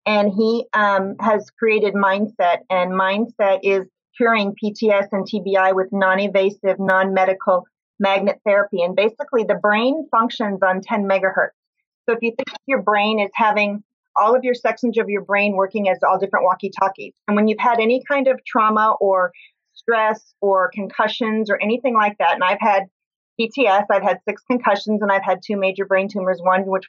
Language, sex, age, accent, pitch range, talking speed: English, female, 30-49, American, 190-220 Hz, 175 wpm